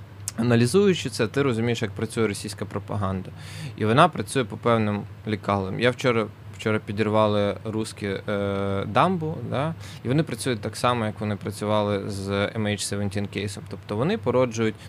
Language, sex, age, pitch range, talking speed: Ukrainian, male, 20-39, 105-135 Hz, 150 wpm